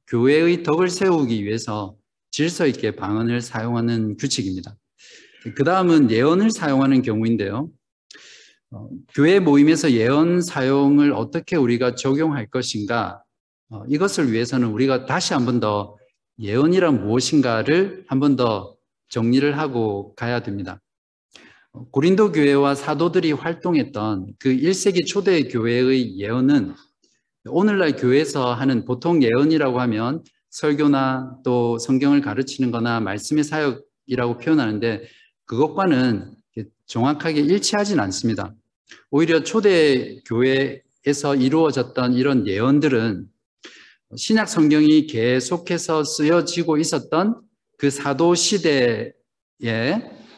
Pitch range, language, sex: 115-155 Hz, Korean, male